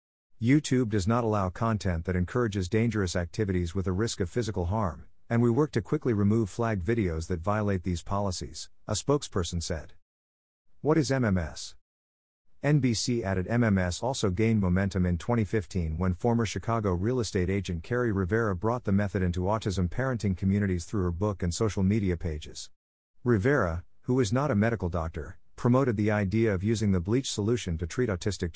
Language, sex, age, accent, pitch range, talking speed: English, male, 50-69, American, 90-115 Hz, 170 wpm